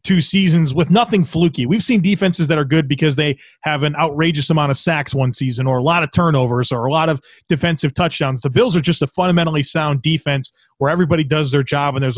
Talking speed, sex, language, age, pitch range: 230 wpm, male, English, 30-49, 140-165 Hz